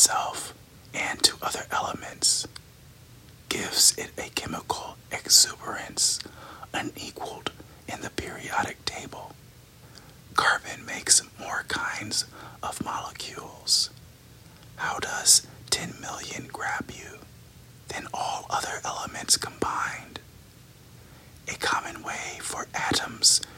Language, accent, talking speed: English, American, 95 wpm